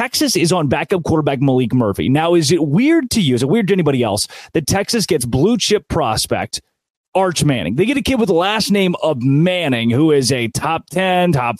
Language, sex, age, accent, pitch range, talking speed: English, male, 30-49, American, 145-195 Hz, 225 wpm